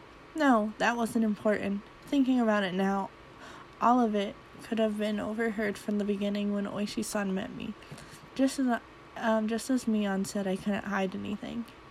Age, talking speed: 20-39, 165 wpm